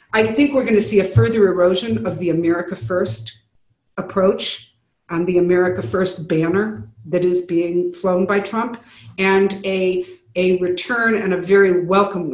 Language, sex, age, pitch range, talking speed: English, female, 50-69, 175-210 Hz, 160 wpm